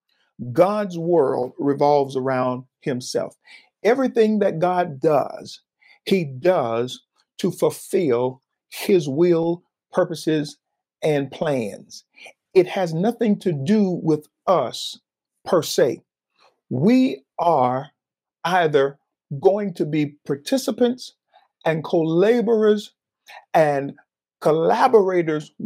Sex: male